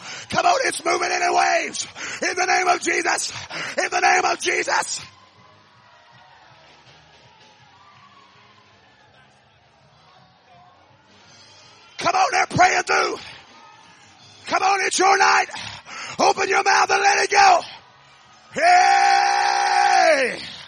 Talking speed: 105 wpm